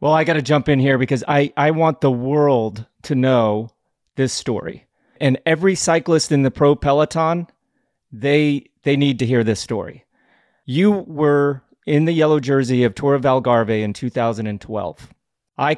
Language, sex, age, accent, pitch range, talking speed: English, male, 30-49, American, 115-145 Hz, 165 wpm